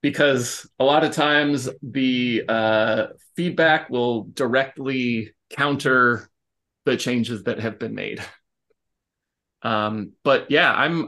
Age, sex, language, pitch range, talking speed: 30-49, male, English, 110-130 Hz, 115 wpm